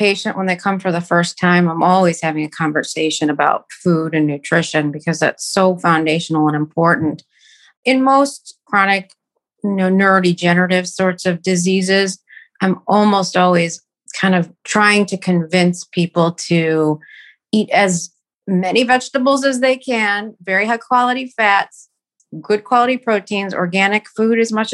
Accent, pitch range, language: American, 170-210 Hz, English